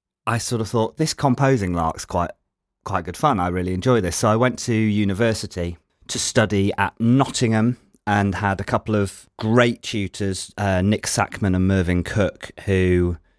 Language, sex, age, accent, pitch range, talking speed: English, male, 30-49, British, 95-115 Hz, 170 wpm